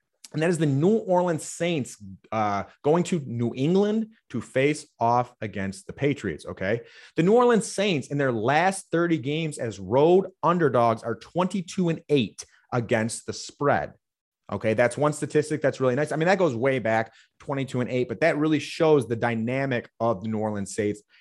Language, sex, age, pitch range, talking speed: English, male, 30-49, 115-160 Hz, 185 wpm